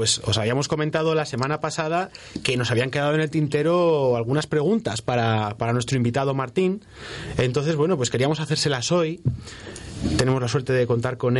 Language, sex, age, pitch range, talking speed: Spanish, male, 30-49, 120-150 Hz, 175 wpm